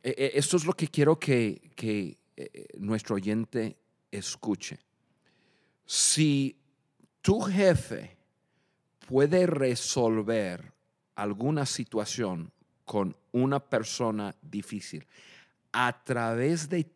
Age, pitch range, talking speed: 50-69, 105-145 Hz, 85 wpm